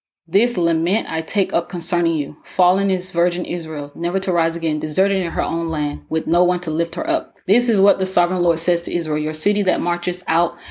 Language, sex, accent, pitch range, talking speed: English, female, American, 165-195 Hz, 230 wpm